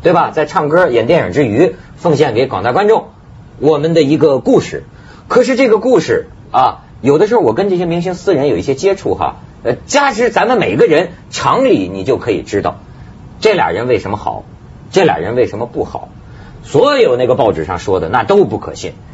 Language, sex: Chinese, male